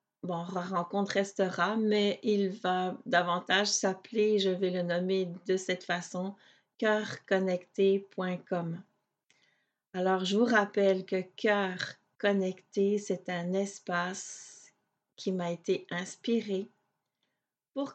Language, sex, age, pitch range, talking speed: French, female, 40-59, 185-210 Hz, 105 wpm